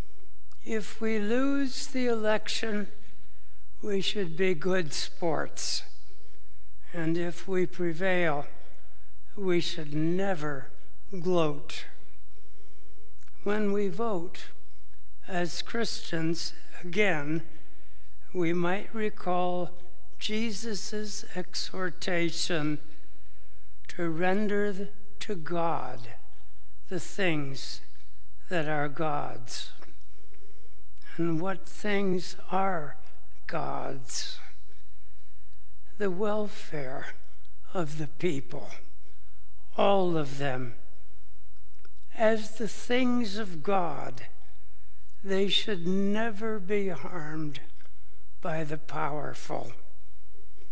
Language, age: English, 60-79